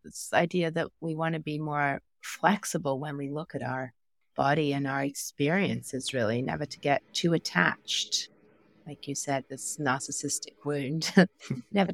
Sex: female